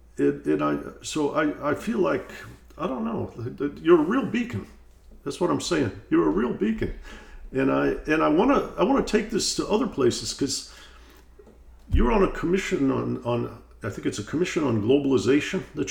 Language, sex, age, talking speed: English, male, 50-69, 190 wpm